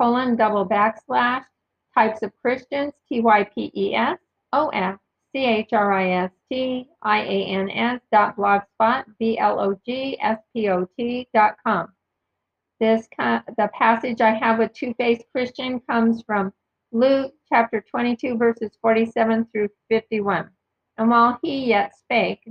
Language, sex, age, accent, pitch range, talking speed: English, female, 50-69, American, 210-245 Hz, 150 wpm